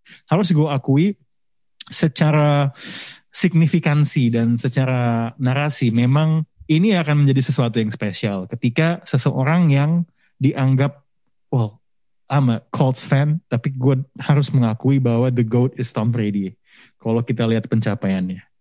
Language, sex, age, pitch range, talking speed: Indonesian, male, 20-39, 125-165 Hz, 125 wpm